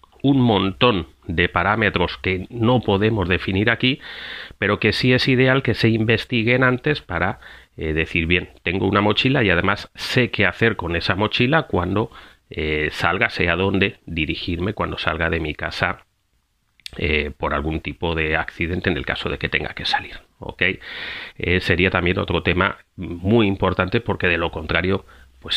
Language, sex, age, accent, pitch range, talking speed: Spanish, male, 30-49, Spanish, 85-115 Hz, 165 wpm